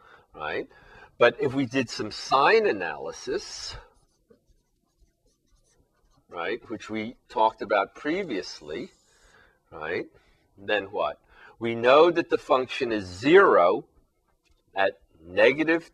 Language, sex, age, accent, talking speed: English, male, 50-69, American, 100 wpm